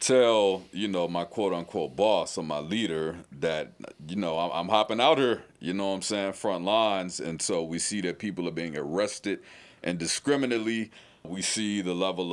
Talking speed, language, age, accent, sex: 185 wpm, English, 40-59, American, male